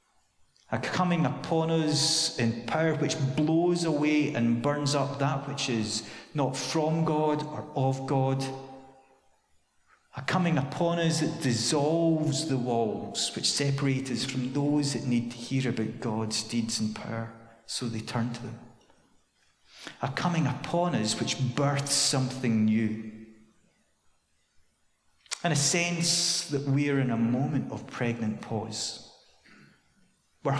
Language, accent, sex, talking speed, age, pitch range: English, British, male, 135 wpm, 40-59, 115-150 Hz